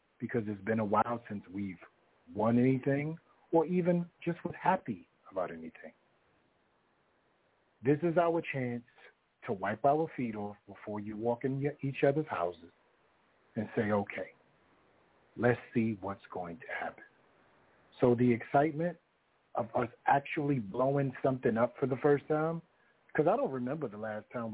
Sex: male